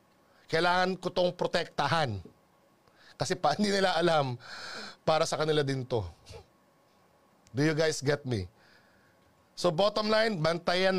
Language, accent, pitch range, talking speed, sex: Filipino, native, 170-240 Hz, 125 wpm, male